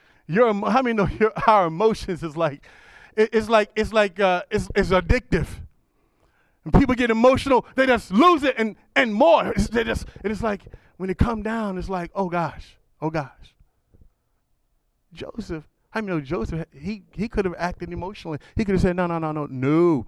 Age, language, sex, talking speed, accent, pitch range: 40-59, English, male, 185 wpm, American, 125-185 Hz